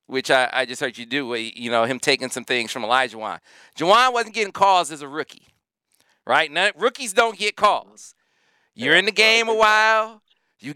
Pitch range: 160-210 Hz